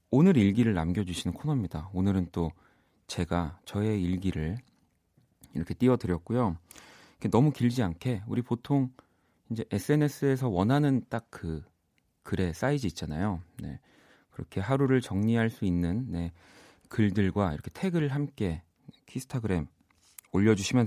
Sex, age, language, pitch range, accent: male, 40-59, Korean, 90-135 Hz, native